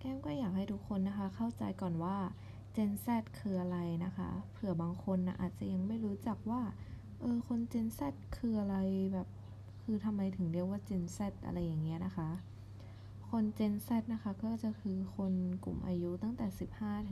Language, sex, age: Thai, female, 20-39